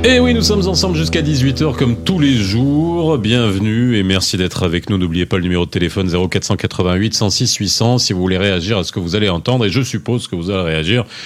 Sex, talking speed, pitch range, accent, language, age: male, 230 wpm, 100-130 Hz, French, French, 40-59